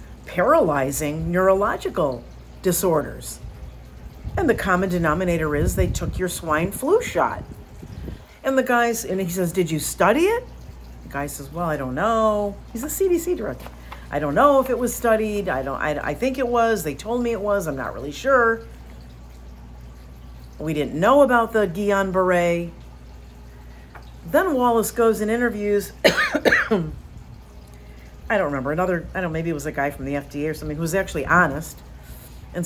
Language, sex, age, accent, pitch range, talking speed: English, female, 50-69, American, 135-205 Hz, 170 wpm